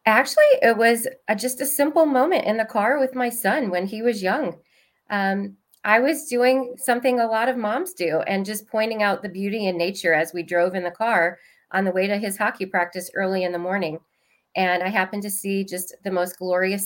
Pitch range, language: 180-220 Hz, English